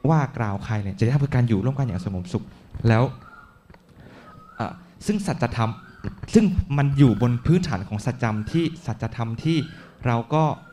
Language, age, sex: Thai, 20-39, male